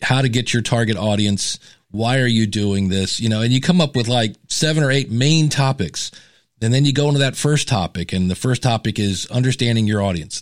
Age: 40-59